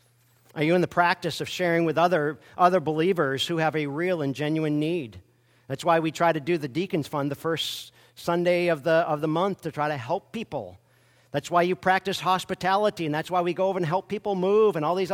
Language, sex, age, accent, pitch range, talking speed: English, male, 40-59, American, 120-170 Hz, 230 wpm